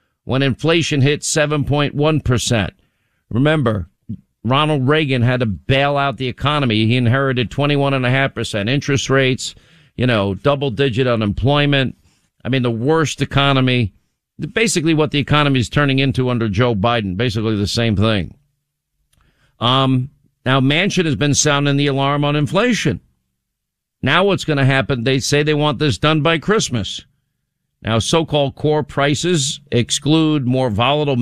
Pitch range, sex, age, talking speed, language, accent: 125-160 Hz, male, 50-69, 150 wpm, English, American